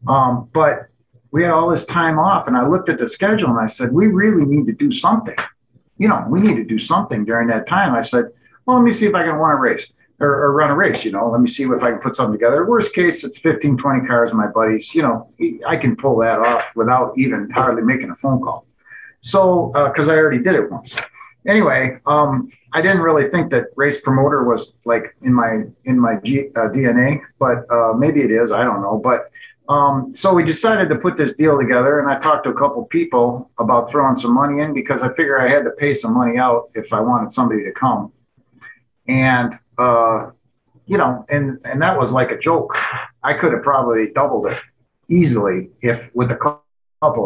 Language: English